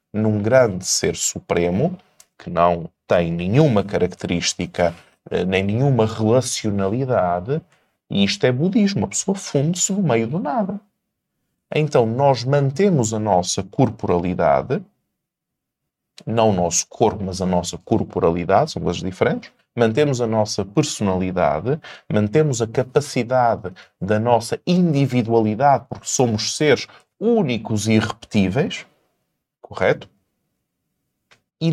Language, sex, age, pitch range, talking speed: Portuguese, male, 20-39, 100-155 Hz, 110 wpm